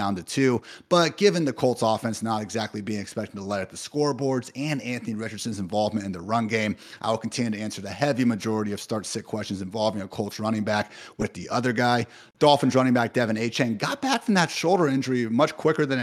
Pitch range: 110-135 Hz